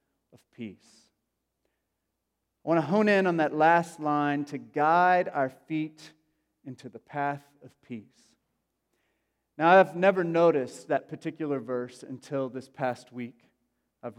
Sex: male